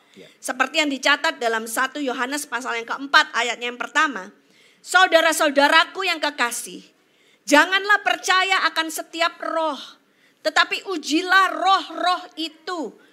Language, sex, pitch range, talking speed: Indonesian, female, 265-350 Hz, 110 wpm